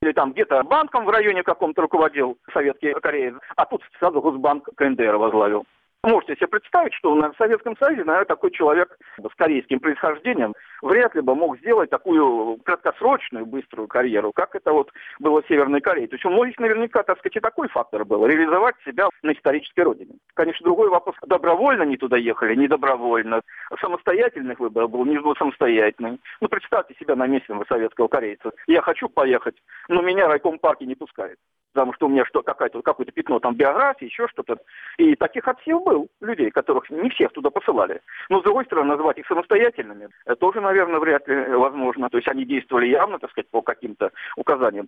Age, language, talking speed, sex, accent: 50-69, Russian, 180 wpm, male, native